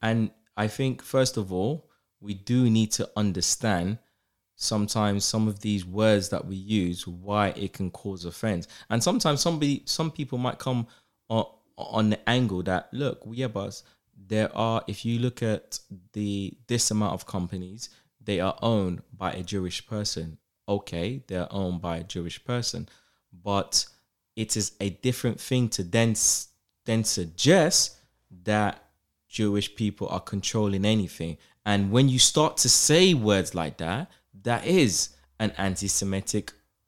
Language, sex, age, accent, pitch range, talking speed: English, male, 20-39, British, 95-120 Hz, 150 wpm